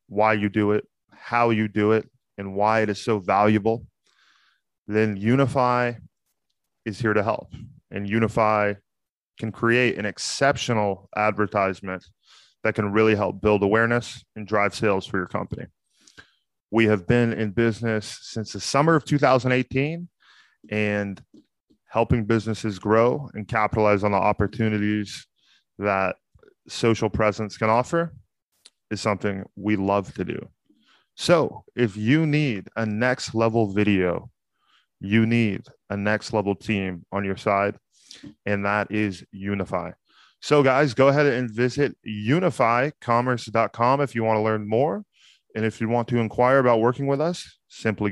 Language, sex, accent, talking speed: English, male, American, 140 wpm